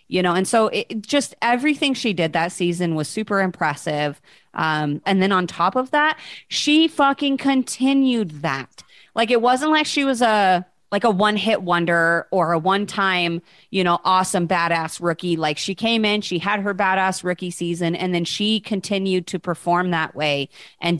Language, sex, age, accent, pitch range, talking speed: English, female, 30-49, American, 165-215 Hz, 185 wpm